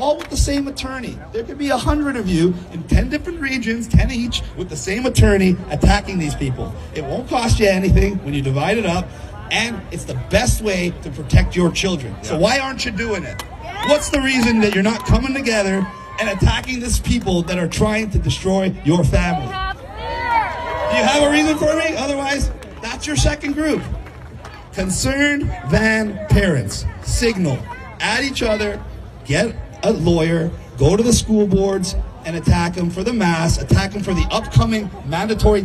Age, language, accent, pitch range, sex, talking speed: 40-59, English, American, 165-230 Hz, male, 180 wpm